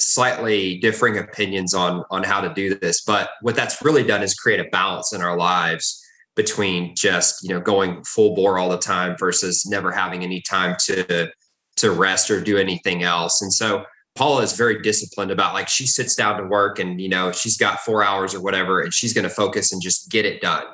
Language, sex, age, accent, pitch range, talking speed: English, male, 20-39, American, 95-110 Hz, 215 wpm